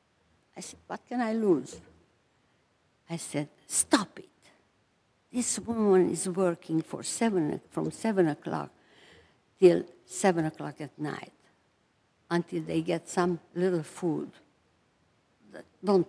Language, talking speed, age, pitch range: English, 110 wpm, 60-79, 160-205 Hz